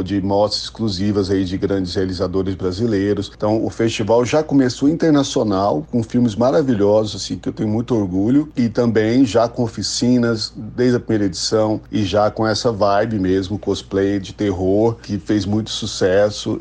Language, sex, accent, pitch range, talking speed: Portuguese, male, Brazilian, 100-120 Hz, 165 wpm